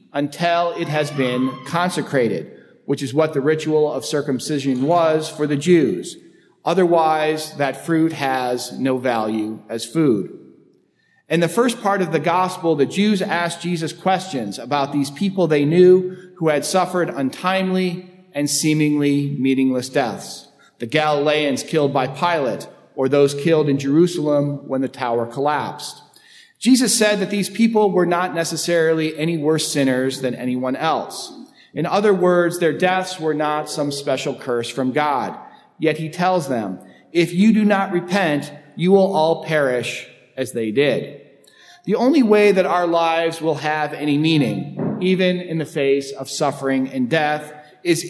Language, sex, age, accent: English, male, 40-59, American